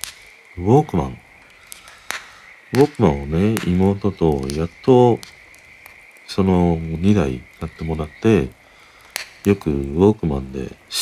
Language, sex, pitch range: Japanese, male, 70-105 Hz